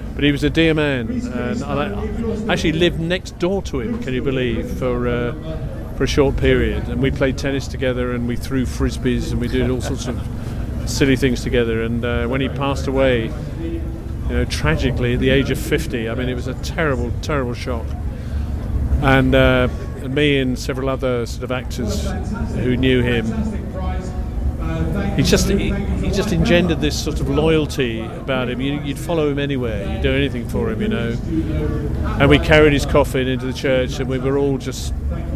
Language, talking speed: English, 190 wpm